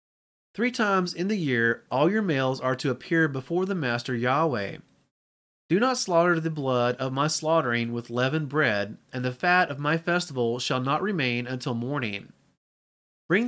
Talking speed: 170 wpm